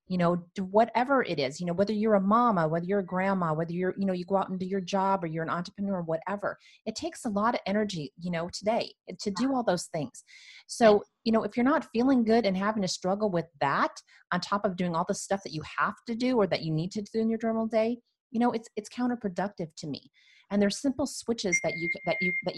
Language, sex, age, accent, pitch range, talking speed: English, female, 30-49, American, 175-220 Hz, 265 wpm